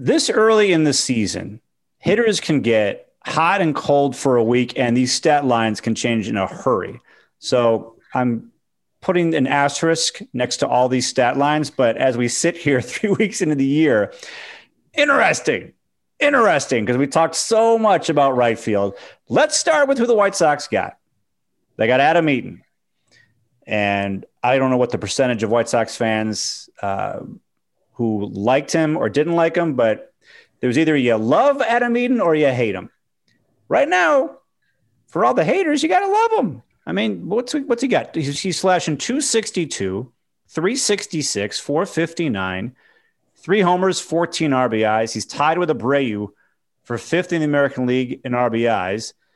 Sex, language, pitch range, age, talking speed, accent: male, English, 120-185 Hz, 30-49, 170 wpm, American